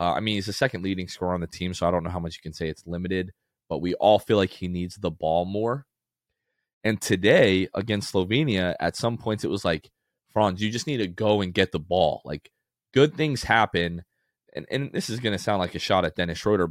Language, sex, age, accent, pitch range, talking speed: English, male, 20-39, American, 90-115 Hz, 250 wpm